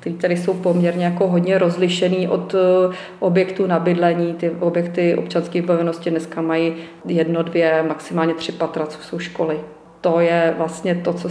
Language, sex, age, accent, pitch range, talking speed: Czech, female, 30-49, native, 170-185 Hz, 150 wpm